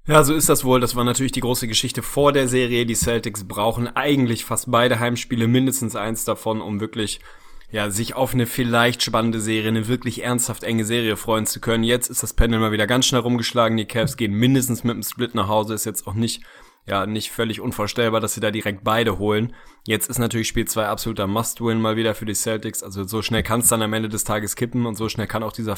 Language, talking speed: German, 235 wpm